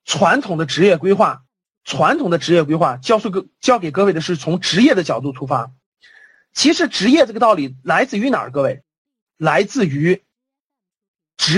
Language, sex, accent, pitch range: Chinese, male, native, 165-275 Hz